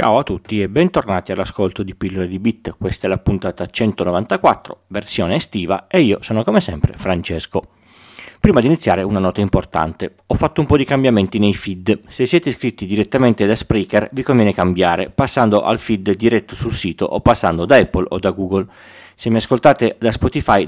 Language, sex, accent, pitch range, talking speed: Italian, male, native, 95-120 Hz, 185 wpm